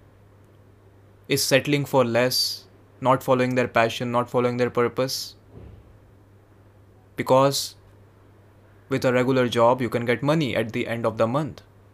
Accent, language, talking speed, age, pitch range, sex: Indian, English, 135 wpm, 20-39, 100-140 Hz, male